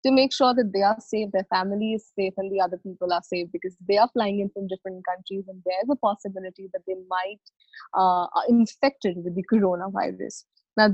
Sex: female